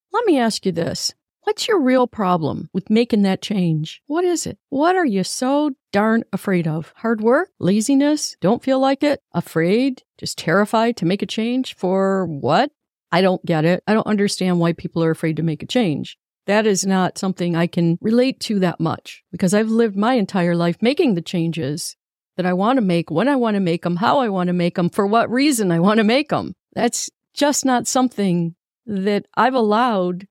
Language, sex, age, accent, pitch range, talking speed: English, female, 50-69, American, 185-250 Hz, 210 wpm